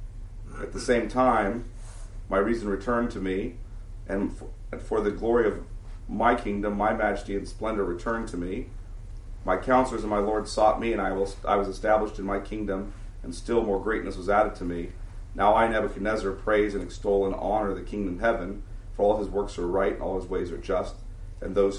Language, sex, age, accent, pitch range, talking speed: English, male, 40-59, American, 95-110 Hz, 195 wpm